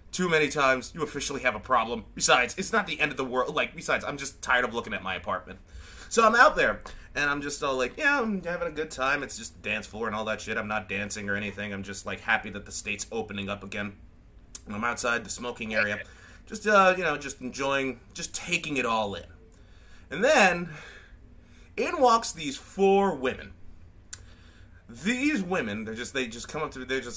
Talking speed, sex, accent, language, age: 220 wpm, male, American, English, 30-49